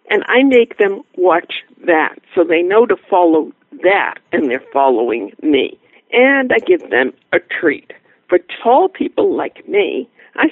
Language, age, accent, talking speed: English, 60-79, American, 160 wpm